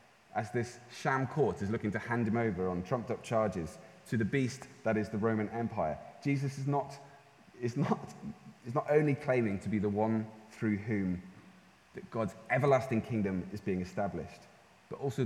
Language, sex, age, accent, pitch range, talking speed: English, male, 30-49, British, 105-130 Hz, 175 wpm